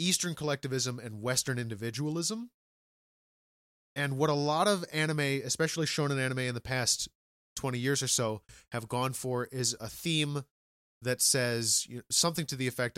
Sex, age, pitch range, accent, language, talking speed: male, 30-49, 115-155 Hz, American, English, 155 wpm